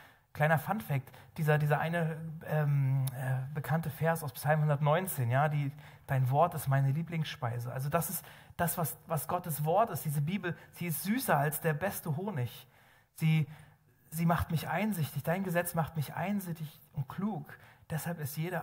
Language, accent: German, German